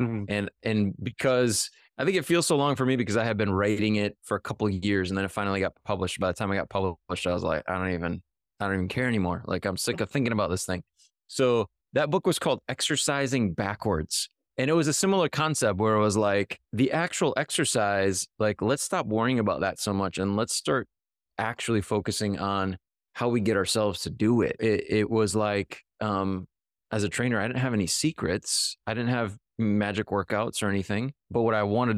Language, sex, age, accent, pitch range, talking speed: English, male, 20-39, American, 95-120 Hz, 220 wpm